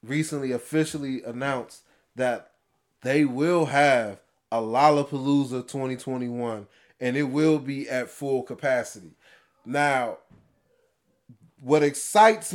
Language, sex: English, male